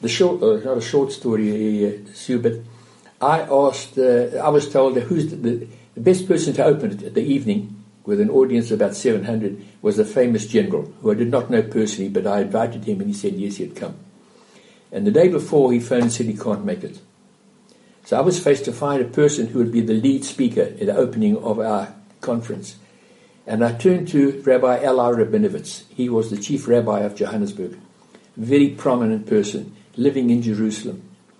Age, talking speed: 60-79, 205 wpm